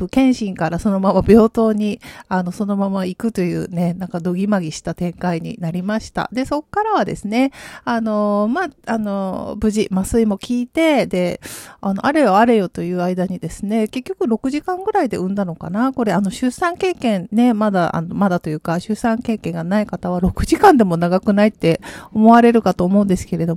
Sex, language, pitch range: female, Japanese, 185-245 Hz